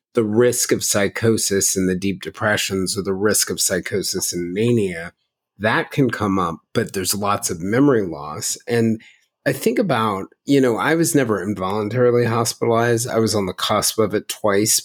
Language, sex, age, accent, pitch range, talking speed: English, male, 30-49, American, 95-120 Hz, 180 wpm